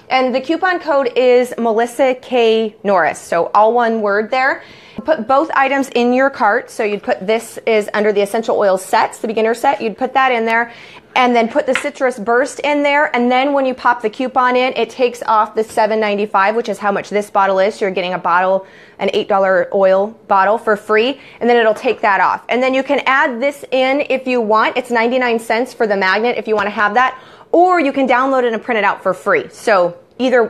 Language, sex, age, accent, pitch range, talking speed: English, female, 20-39, American, 210-260 Hz, 225 wpm